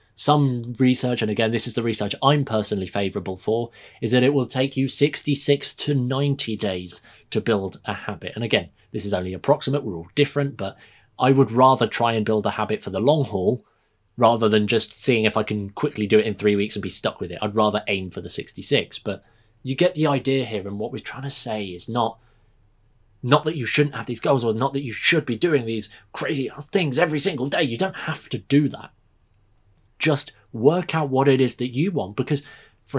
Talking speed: 225 wpm